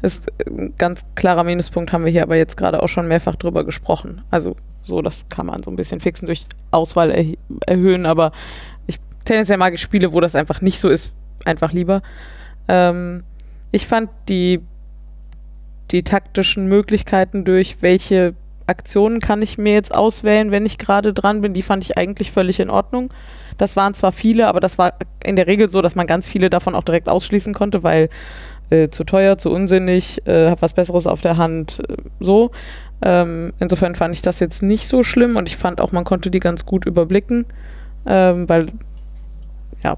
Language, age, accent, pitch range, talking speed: German, 20-39, German, 165-195 Hz, 190 wpm